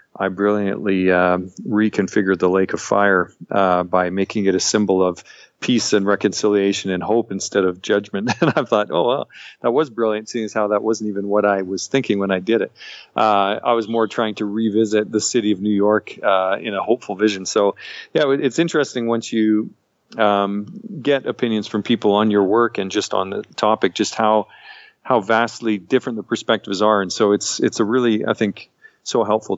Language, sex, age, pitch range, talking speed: English, male, 40-59, 95-110 Hz, 200 wpm